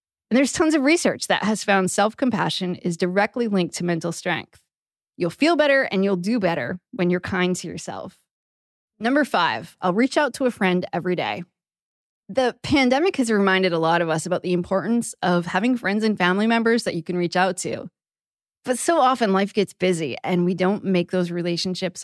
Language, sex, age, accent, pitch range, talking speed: English, female, 20-39, American, 180-230 Hz, 195 wpm